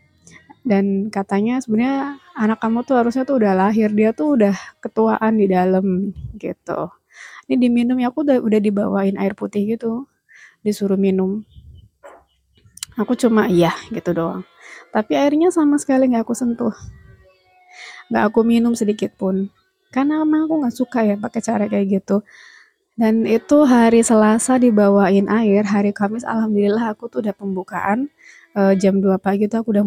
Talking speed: 150 wpm